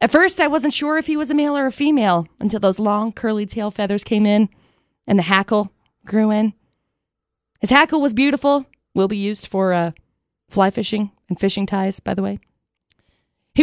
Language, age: English, 20-39